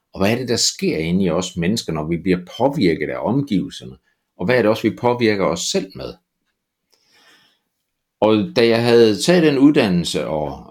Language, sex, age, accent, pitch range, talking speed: Danish, male, 60-79, native, 100-150 Hz, 190 wpm